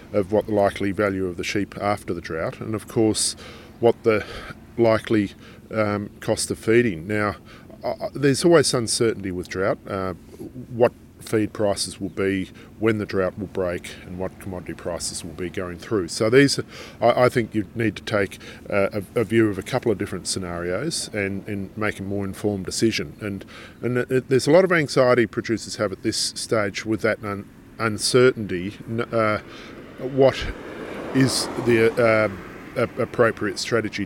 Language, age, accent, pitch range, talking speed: English, 40-59, Australian, 100-115 Hz, 170 wpm